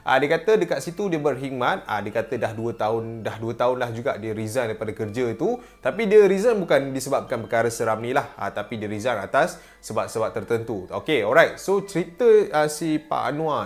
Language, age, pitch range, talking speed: Malay, 20-39, 110-160 Hz, 190 wpm